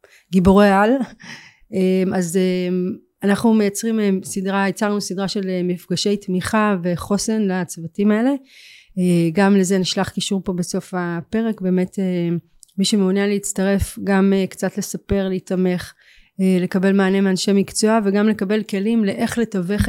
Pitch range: 185-215 Hz